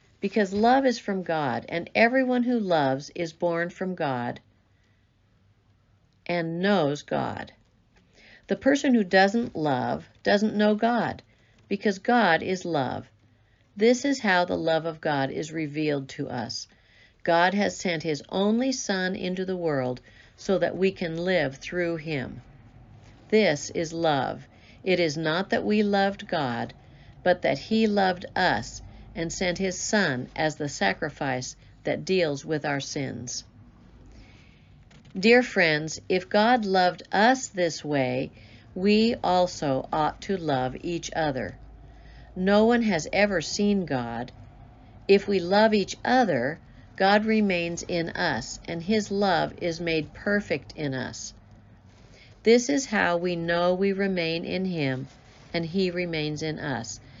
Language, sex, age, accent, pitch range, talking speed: English, female, 50-69, American, 130-200 Hz, 140 wpm